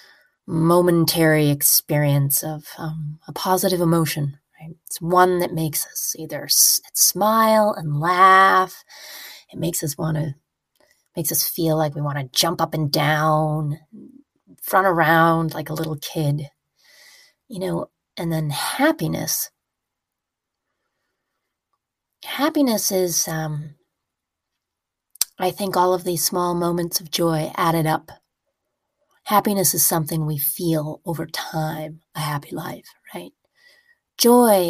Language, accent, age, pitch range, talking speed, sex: English, American, 30-49, 160-210 Hz, 120 wpm, female